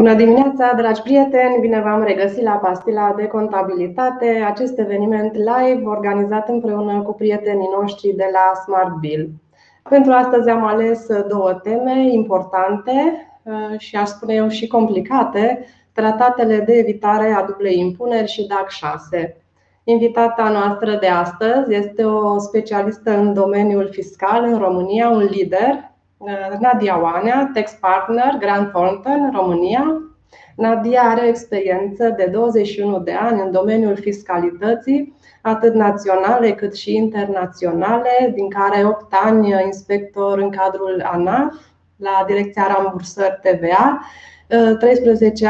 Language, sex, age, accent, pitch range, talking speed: Romanian, female, 20-39, native, 195-230 Hz, 125 wpm